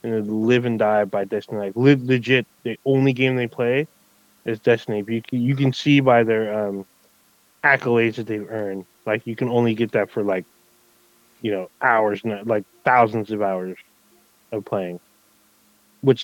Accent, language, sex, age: American, English, male, 20-39